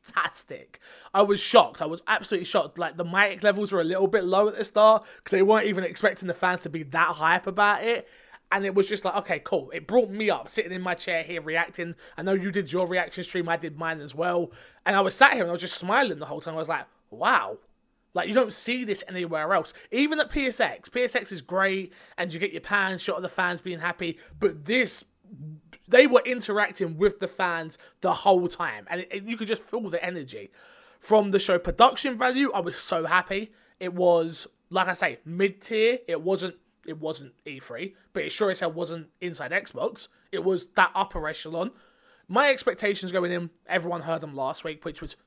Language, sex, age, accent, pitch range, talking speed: English, male, 20-39, British, 170-220 Hz, 215 wpm